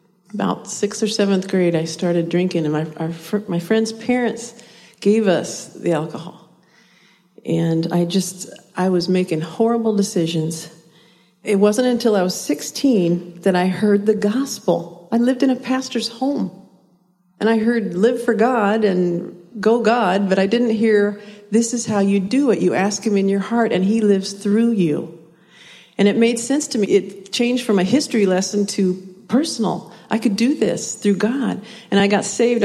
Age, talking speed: 50-69, 180 wpm